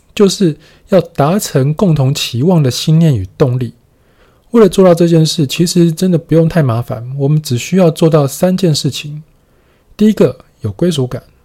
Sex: male